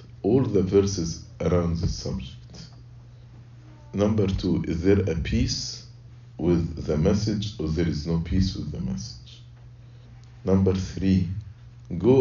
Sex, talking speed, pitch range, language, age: male, 130 wpm, 85-120 Hz, English, 50-69